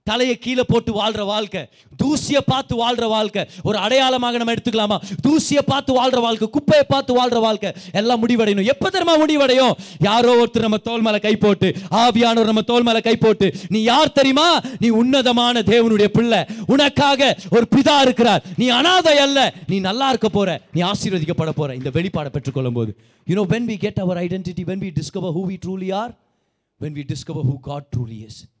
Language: Tamil